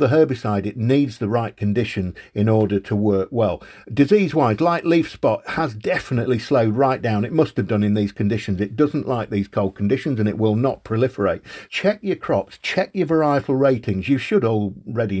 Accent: British